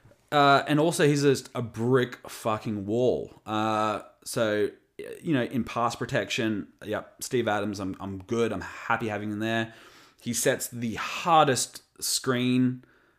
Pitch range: 110-140 Hz